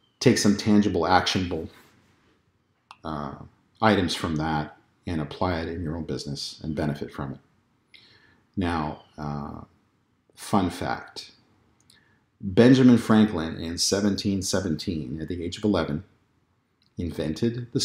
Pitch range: 85-115 Hz